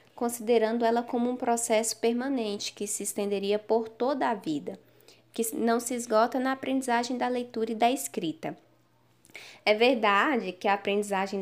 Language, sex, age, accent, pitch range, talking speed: Portuguese, female, 10-29, Brazilian, 210-260 Hz, 150 wpm